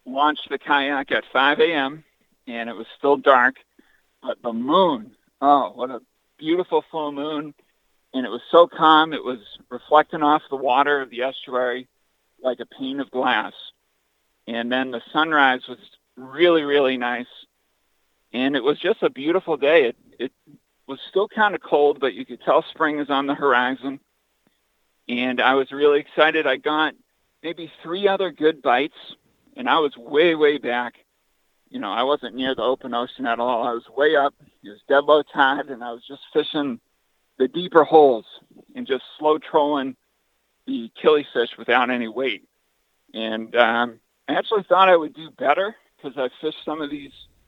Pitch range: 125-155 Hz